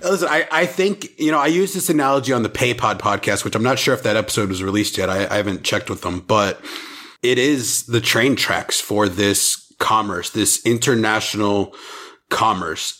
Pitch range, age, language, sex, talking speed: 100-120 Hz, 30-49, English, male, 195 wpm